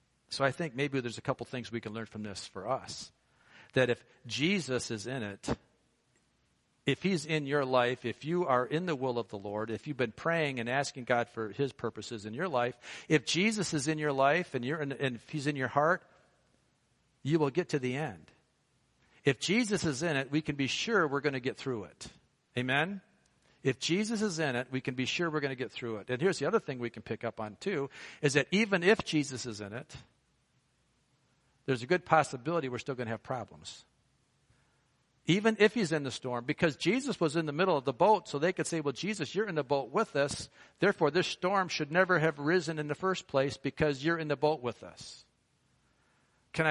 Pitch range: 125-160 Hz